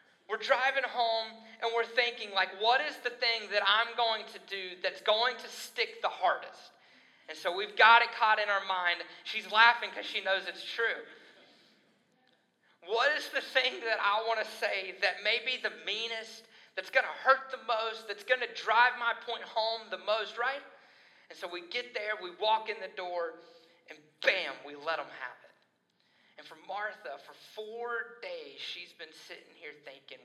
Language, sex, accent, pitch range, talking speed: English, male, American, 190-255 Hz, 190 wpm